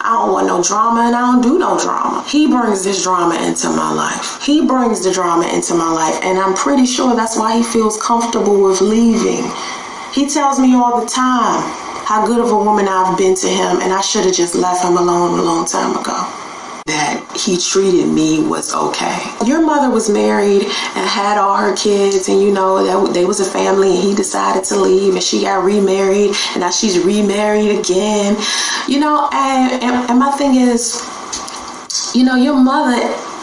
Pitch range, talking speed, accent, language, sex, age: 185-235 Hz, 200 wpm, American, English, female, 30-49